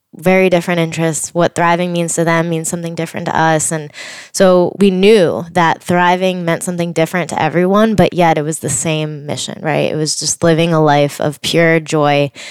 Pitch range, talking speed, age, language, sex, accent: 160-175 Hz, 195 wpm, 20-39, English, female, American